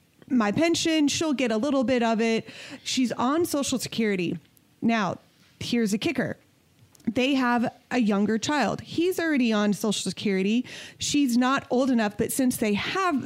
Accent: American